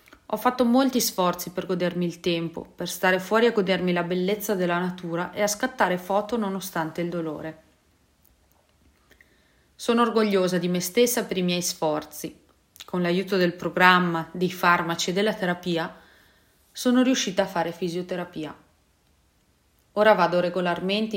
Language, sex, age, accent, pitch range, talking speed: English, female, 30-49, Italian, 165-210 Hz, 140 wpm